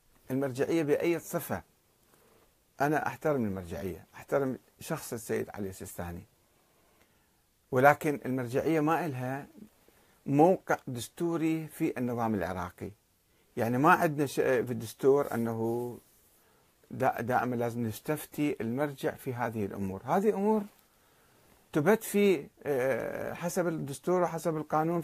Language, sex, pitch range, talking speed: Arabic, male, 110-160 Hz, 105 wpm